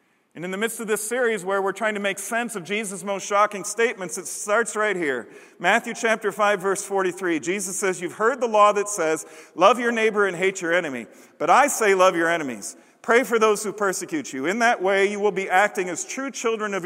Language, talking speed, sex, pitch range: English, 230 wpm, male, 170-230 Hz